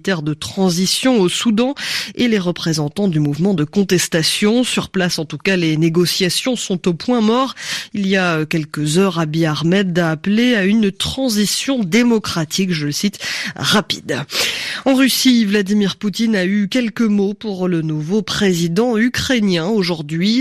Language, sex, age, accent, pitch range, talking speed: French, female, 20-39, French, 170-220 Hz, 155 wpm